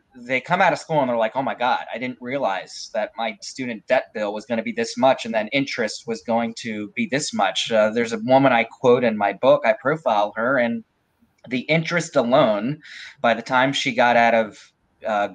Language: English